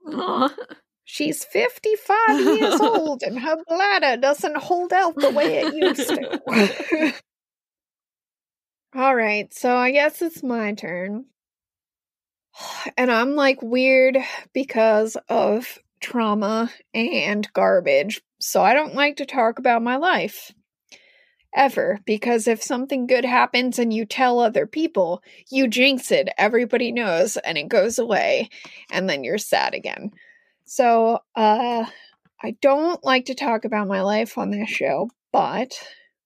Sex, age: female, 30-49